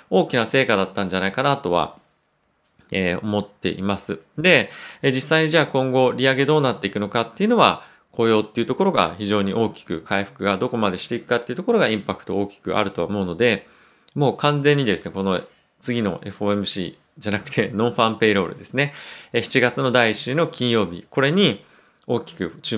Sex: male